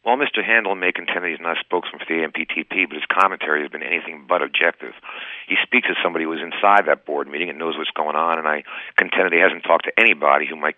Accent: American